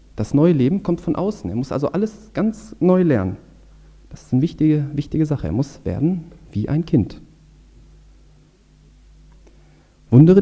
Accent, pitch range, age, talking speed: German, 115-165 Hz, 40-59, 150 wpm